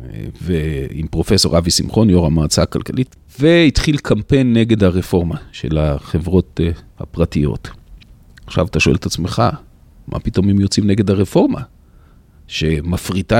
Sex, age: male, 40-59